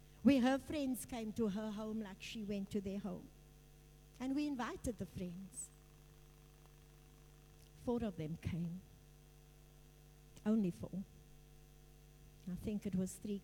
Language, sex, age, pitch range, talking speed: English, female, 60-79, 150-230 Hz, 130 wpm